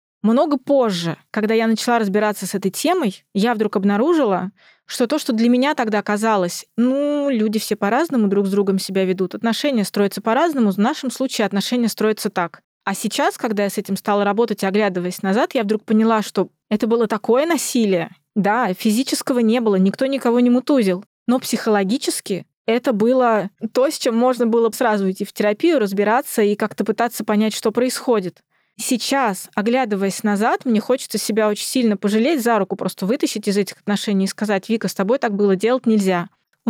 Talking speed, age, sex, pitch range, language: 180 wpm, 20-39, female, 200-245 Hz, Russian